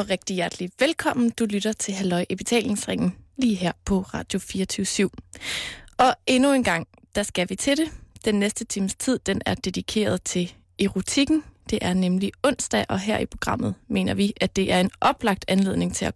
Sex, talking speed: female, 185 wpm